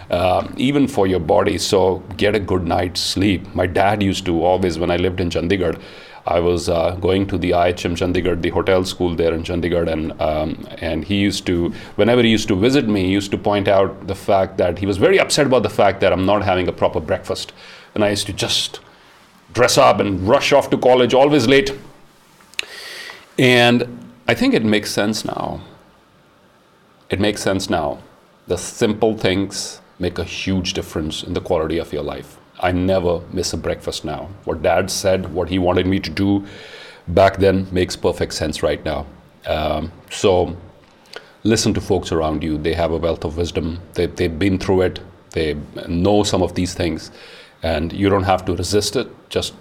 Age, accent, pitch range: 40-59, Indian, 90-105 Hz